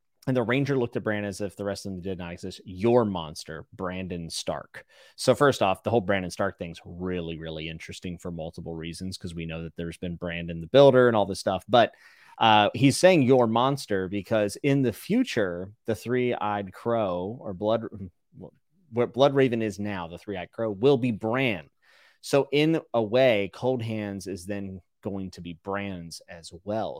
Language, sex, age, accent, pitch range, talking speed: English, male, 30-49, American, 95-125 Hz, 200 wpm